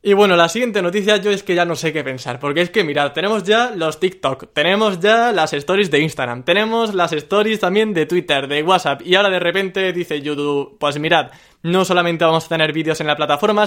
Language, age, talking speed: Spanish, 20-39, 230 wpm